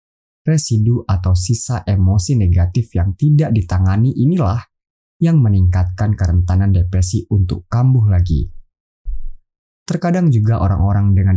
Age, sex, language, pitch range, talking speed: 20-39, male, Indonesian, 90-120 Hz, 105 wpm